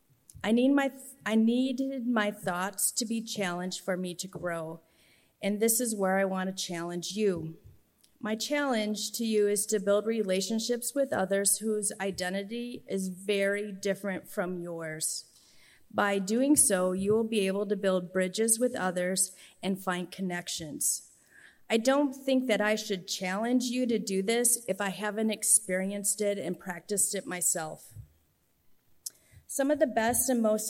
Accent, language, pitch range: American, English, 185-225 Hz